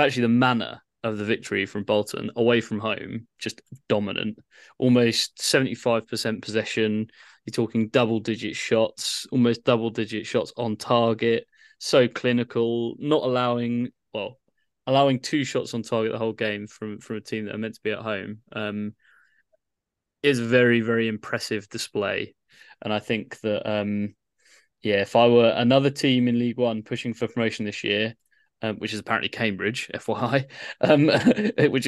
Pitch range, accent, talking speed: 105-120 Hz, British, 160 wpm